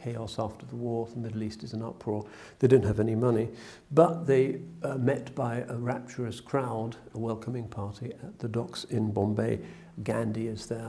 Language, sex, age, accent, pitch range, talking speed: English, male, 60-79, British, 110-130 Hz, 185 wpm